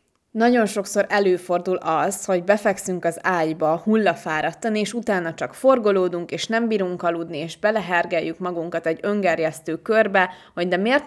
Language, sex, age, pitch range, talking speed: Hungarian, female, 20-39, 170-210 Hz, 140 wpm